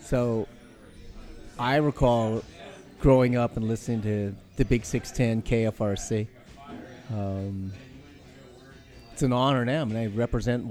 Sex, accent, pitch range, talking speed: male, American, 100-125 Hz, 110 wpm